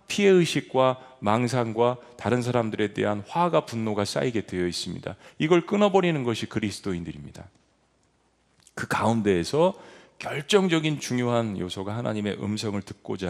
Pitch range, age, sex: 105-160 Hz, 40-59, male